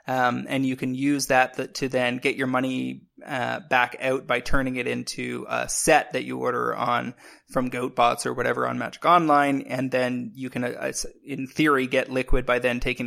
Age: 20-39